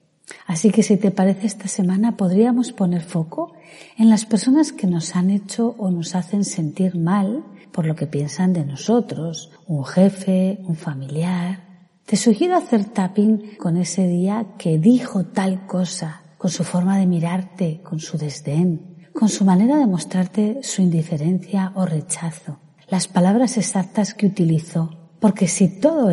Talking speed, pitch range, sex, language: 155 wpm, 165-205 Hz, female, Spanish